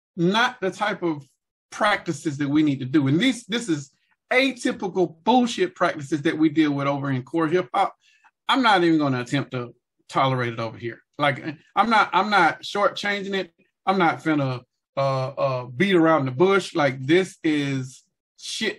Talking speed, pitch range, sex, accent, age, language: 180 wpm, 160-230 Hz, male, American, 40-59, English